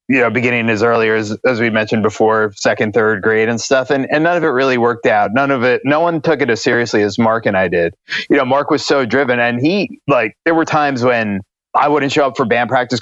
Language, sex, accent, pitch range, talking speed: English, male, American, 115-140 Hz, 265 wpm